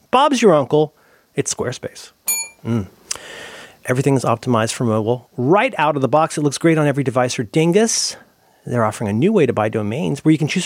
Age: 40-59